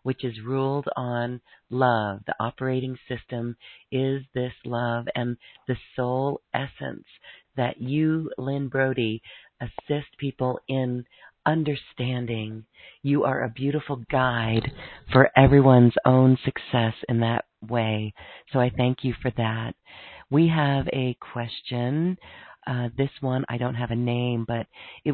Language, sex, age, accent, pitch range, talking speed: English, female, 40-59, American, 120-140 Hz, 130 wpm